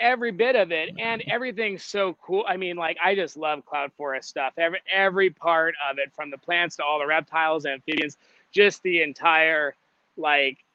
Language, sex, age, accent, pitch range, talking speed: English, male, 30-49, American, 140-160 Hz, 195 wpm